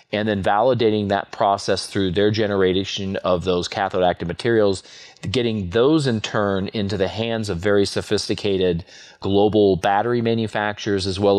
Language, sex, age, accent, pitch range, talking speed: English, male, 40-59, American, 95-110 Hz, 140 wpm